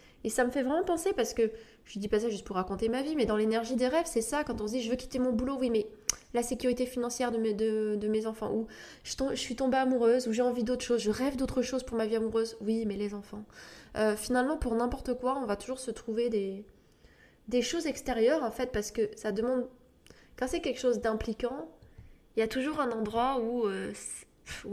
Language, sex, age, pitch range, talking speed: French, female, 20-39, 210-250 Hz, 250 wpm